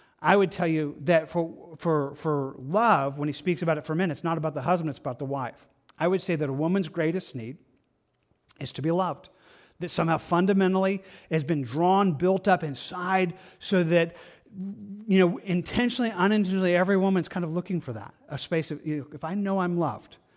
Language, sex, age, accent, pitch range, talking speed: English, male, 40-59, American, 145-185 Hz, 205 wpm